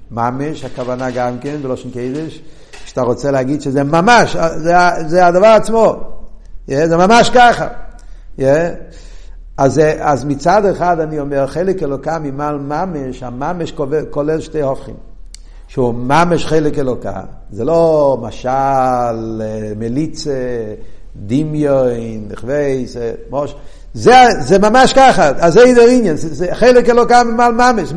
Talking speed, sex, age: 120 wpm, male, 50-69